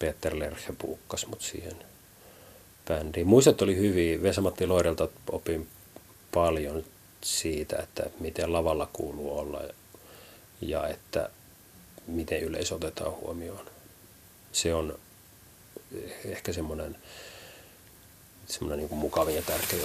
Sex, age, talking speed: male, 30-49, 100 wpm